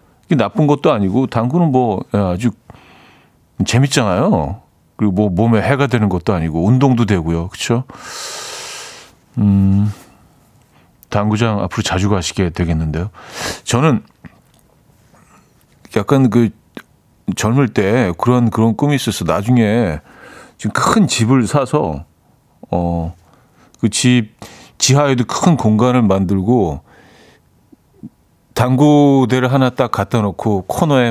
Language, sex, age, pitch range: Korean, male, 40-59, 95-125 Hz